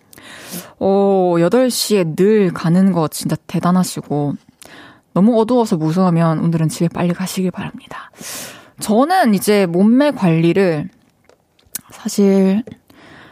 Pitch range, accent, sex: 175-235 Hz, native, female